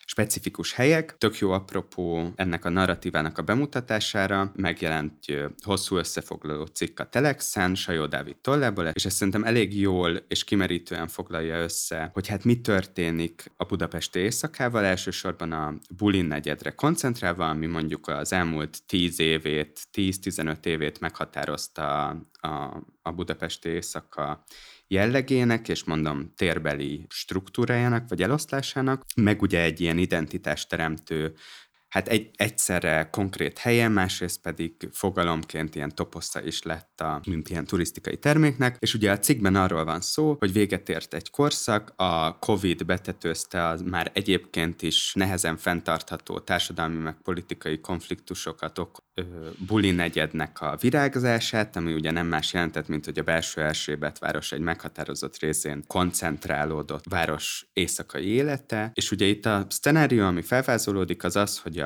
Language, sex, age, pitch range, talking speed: Hungarian, male, 20-39, 80-105 Hz, 140 wpm